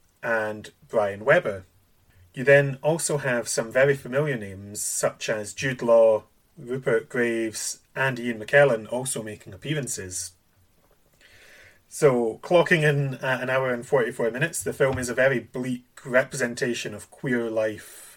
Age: 30-49